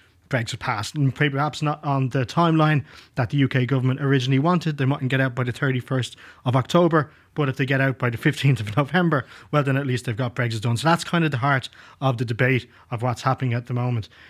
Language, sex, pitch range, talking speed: English, male, 120-145 Hz, 240 wpm